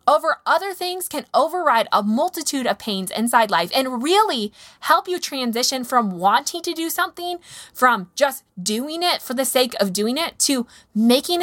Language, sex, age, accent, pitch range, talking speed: English, female, 20-39, American, 215-315 Hz, 175 wpm